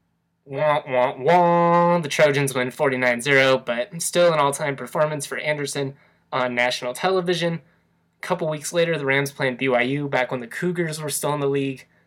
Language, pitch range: English, 125-150 Hz